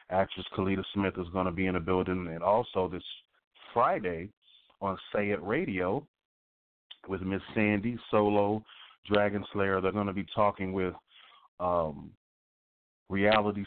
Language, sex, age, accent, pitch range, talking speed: English, male, 30-49, American, 90-100 Hz, 140 wpm